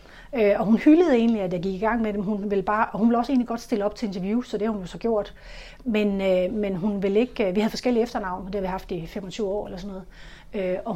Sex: female